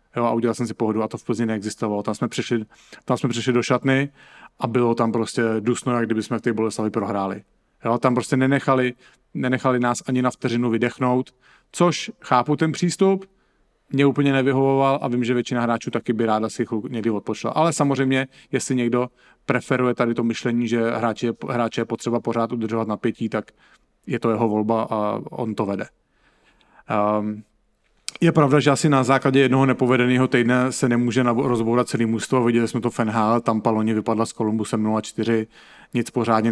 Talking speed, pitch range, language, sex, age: 180 wpm, 110-125 Hz, English, male, 40-59